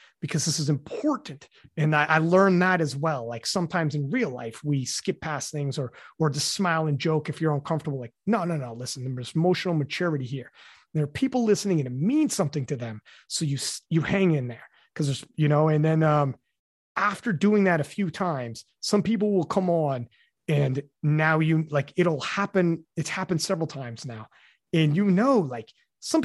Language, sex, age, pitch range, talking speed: English, male, 30-49, 145-205 Hz, 200 wpm